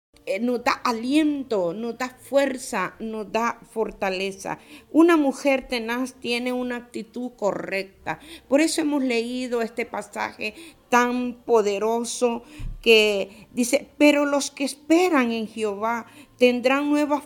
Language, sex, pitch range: Spanish, female, 230-285 Hz